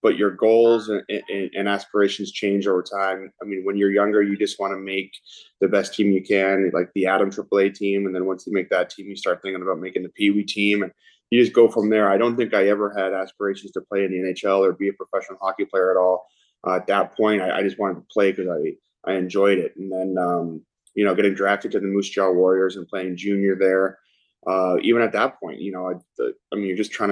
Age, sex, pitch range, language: 20-39, male, 95-105 Hz, English